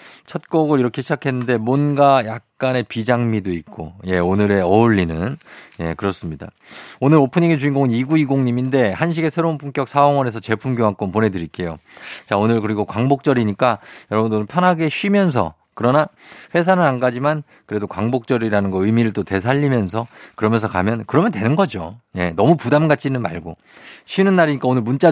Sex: male